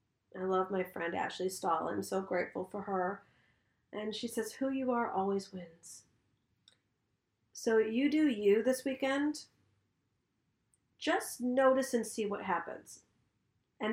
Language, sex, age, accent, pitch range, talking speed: English, female, 40-59, American, 190-245 Hz, 140 wpm